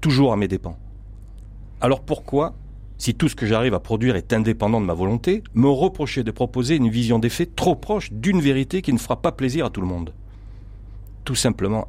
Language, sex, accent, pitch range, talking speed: French, male, French, 100-135 Hz, 205 wpm